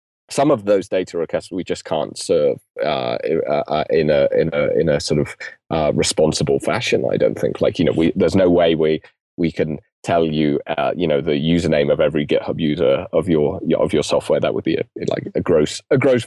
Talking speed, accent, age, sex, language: 220 wpm, British, 20-39, male, English